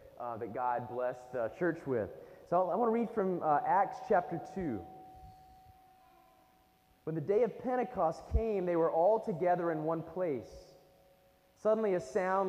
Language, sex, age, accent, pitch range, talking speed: English, male, 20-39, American, 140-185 Hz, 160 wpm